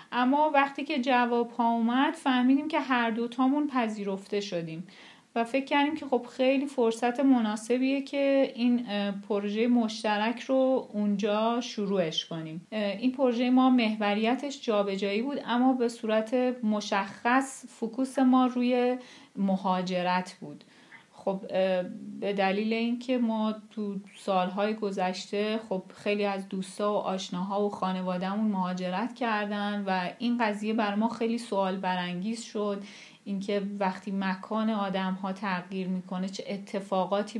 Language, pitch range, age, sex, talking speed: English, 190-240 Hz, 40-59, female, 130 wpm